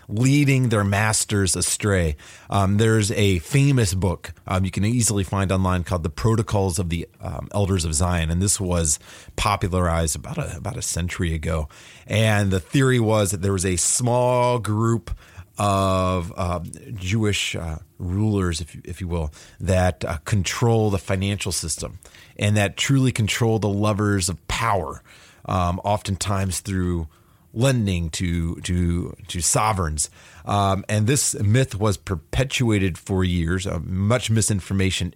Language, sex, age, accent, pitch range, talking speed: English, male, 30-49, American, 90-115 Hz, 150 wpm